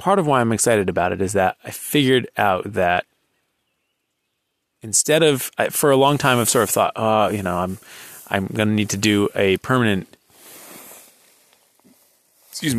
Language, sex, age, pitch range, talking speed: English, male, 30-49, 95-115 Hz, 170 wpm